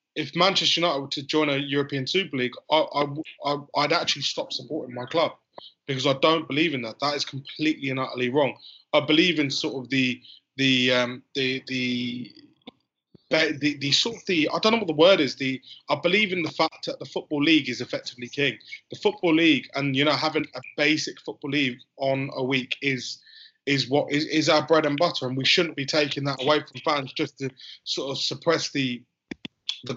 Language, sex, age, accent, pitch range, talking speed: English, male, 20-39, British, 135-160 Hz, 210 wpm